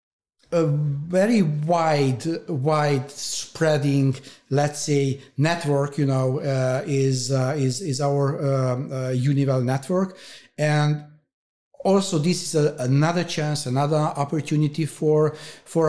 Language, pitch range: Hungarian, 130-150 Hz